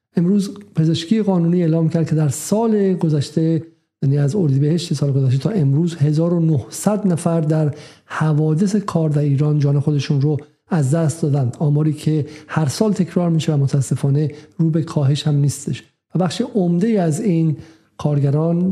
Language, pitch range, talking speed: Persian, 140-165 Hz, 155 wpm